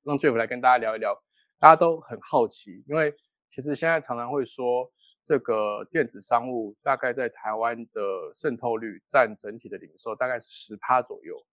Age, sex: 20-39, male